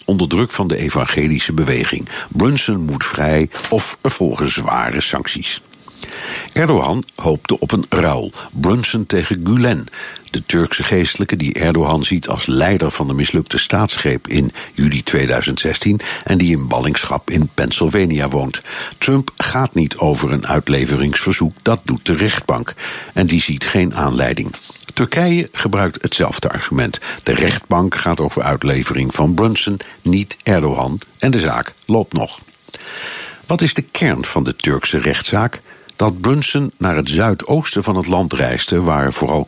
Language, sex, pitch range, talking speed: Dutch, male, 75-105 Hz, 145 wpm